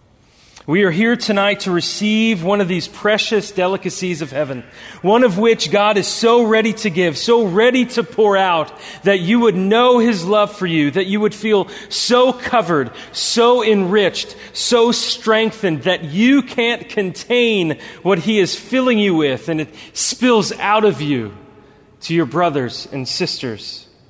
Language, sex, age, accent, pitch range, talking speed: English, male, 30-49, American, 155-220 Hz, 165 wpm